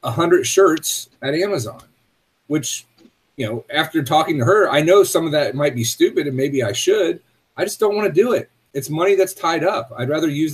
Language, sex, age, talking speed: English, male, 30-49, 215 wpm